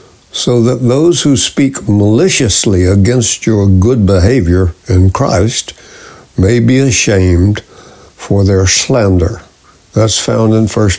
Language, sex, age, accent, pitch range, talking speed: English, male, 60-79, American, 95-125 Hz, 120 wpm